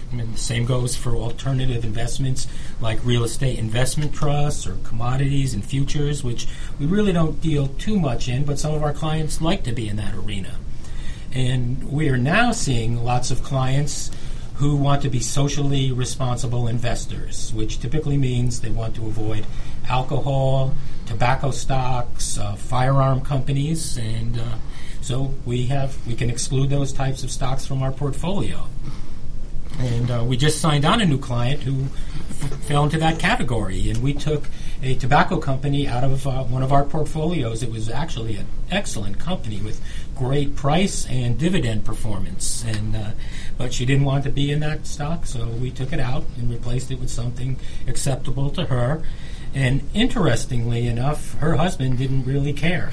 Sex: male